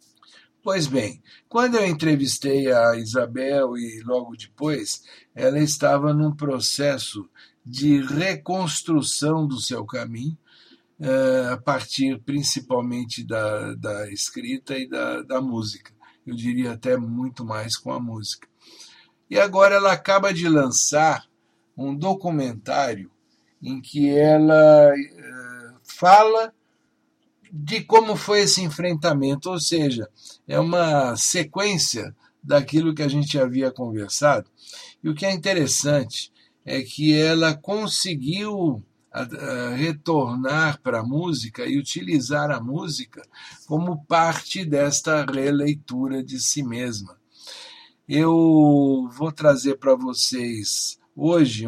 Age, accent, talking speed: 60-79, Brazilian, 110 wpm